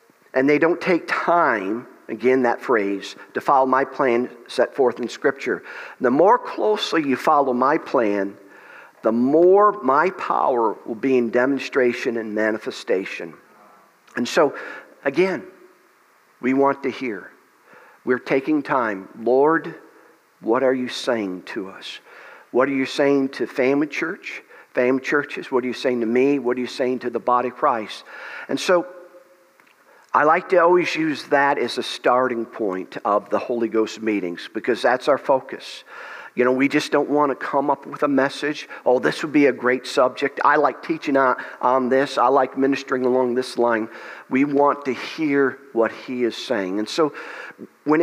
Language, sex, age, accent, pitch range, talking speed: English, male, 50-69, American, 120-145 Hz, 170 wpm